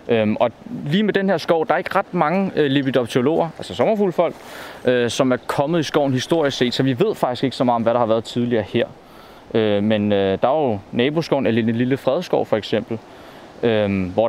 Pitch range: 110-130 Hz